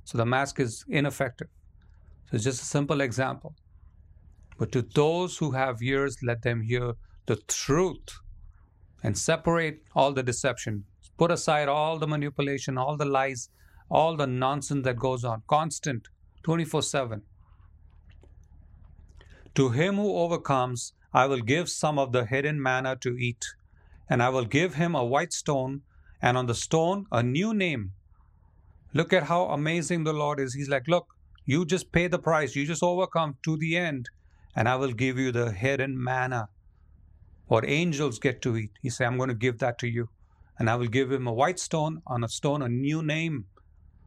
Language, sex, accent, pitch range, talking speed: English, male, Indian, 105-155 Hz, 175 wpm